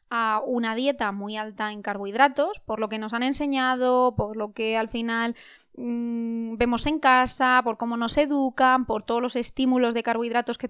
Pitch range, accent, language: 230-280 Hz, Spanish, Spanish